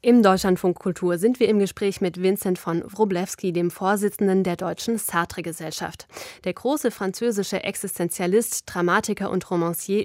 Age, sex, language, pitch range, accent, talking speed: 20-39, female, German, 185-220 Hz, German, 135 wpm